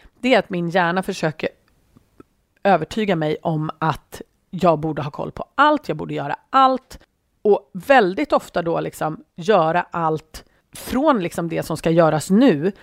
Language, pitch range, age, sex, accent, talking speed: Swedish, 160-235 Hz, 30-49, female, native, 160 wpm